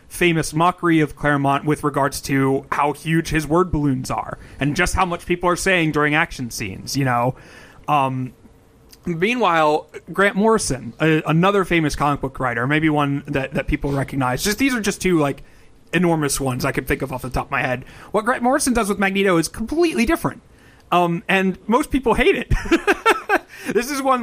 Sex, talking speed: male, 190 wpm